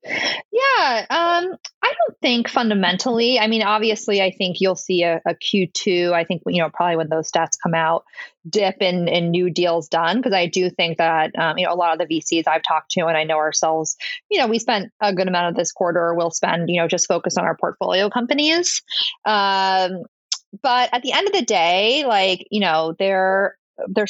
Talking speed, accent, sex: 210 wpm, American, female